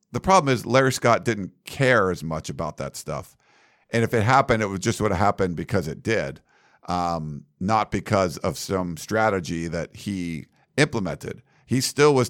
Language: English